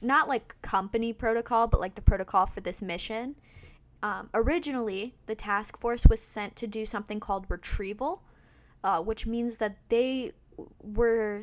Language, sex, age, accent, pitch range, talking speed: English, female, 20-39, American, 190-225 Hz, 150 wpm